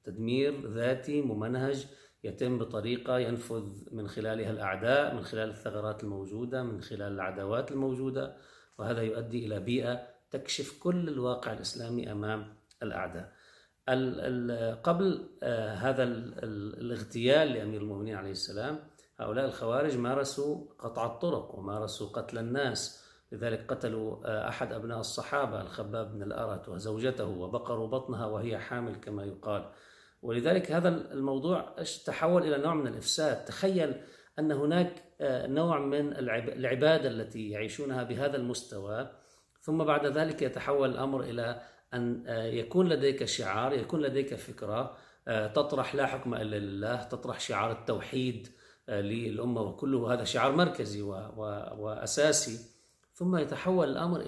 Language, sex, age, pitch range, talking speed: Arabic, male, 40-59, 110-140 Hz, 115 wpm